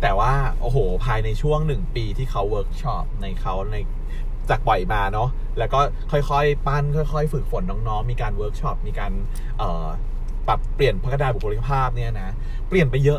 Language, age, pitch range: Thai, 20-39, 115-145 Hz